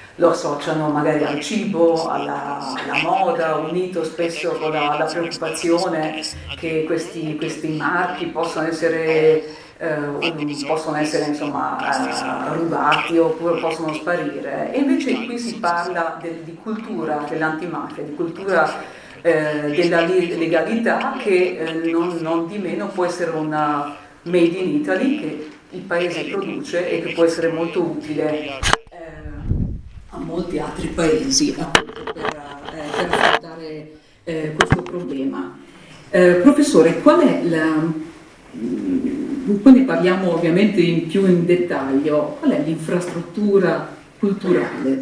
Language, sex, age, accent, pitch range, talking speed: Italian, female, 40-59, native, 155-180 Hz, 125 wpm